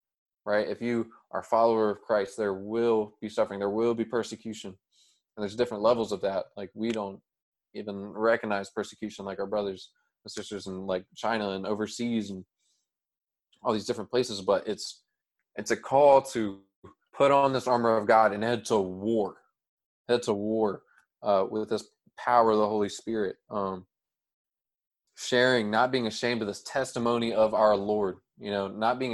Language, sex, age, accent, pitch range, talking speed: English, male, 20-39, American, 105-125 Hz, 175 wpm